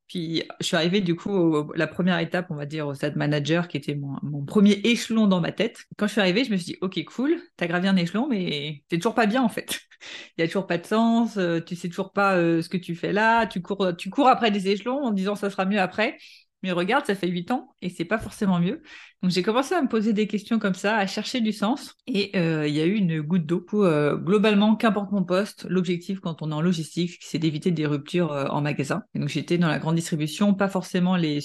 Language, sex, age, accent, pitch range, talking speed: French, female, 30-49, French, 160-205 Hz, 270 wpm